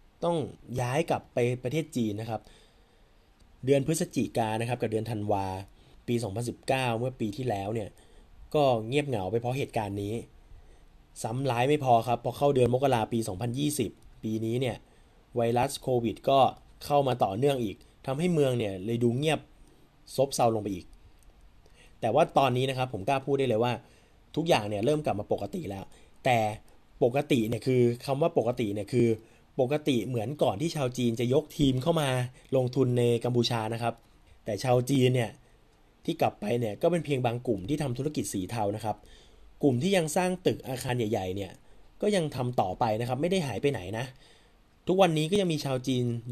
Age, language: 20-39, Thai